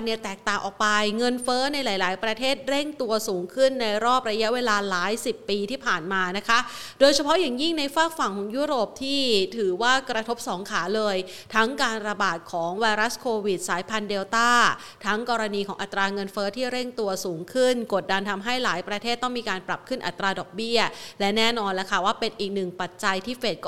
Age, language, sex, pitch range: 30-49, Thai, female, 210-265 Hz